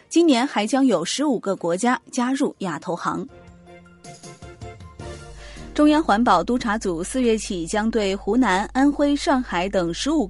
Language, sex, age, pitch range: Chinese, female, 20-39, 190-265 Hz